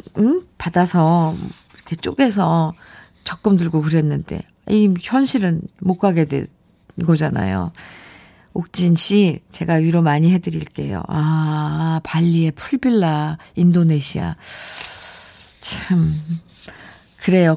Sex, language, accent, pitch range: female, Korean, native, 165-250 Hz